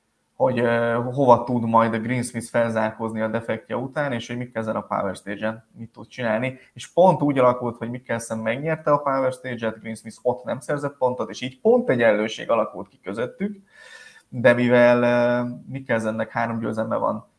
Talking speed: 180 wpm